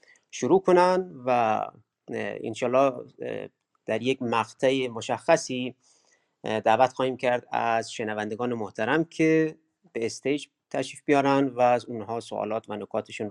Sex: male